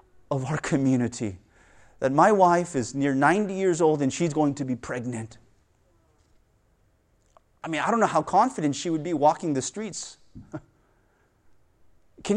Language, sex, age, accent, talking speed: English, male, 30-49, American, 150 wpm